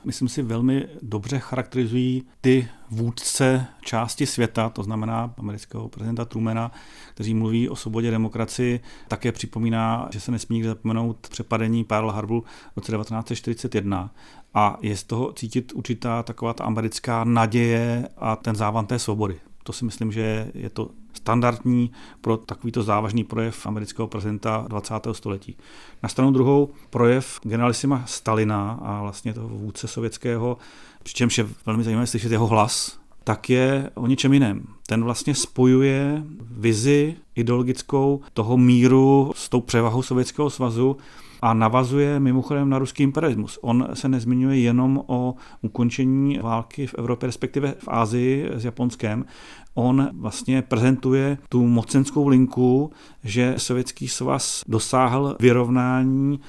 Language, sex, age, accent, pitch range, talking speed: Czech, male, 40-59, native, 115-130 Hz, 135 wpm